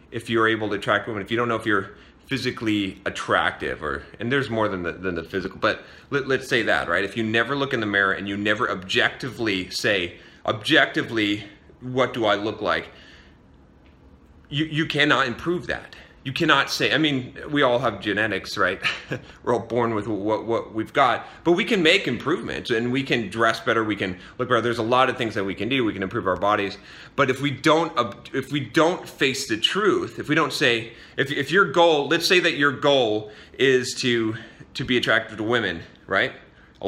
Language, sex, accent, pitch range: English, male, American, 105-145 Hz